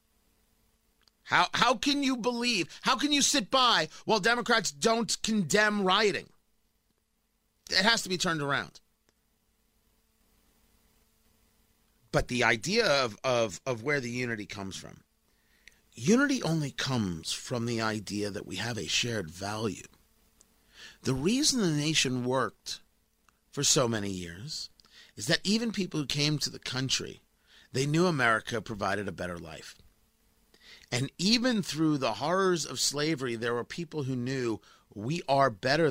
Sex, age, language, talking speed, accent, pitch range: male, 40-59, English, 140 wpm, American, 115-180 Hz